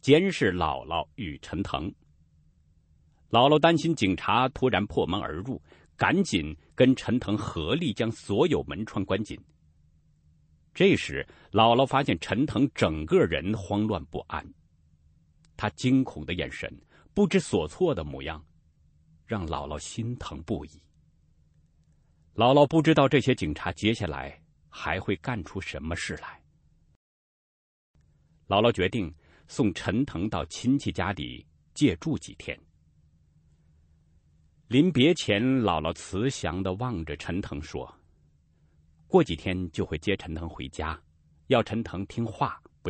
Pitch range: 75-105 Hz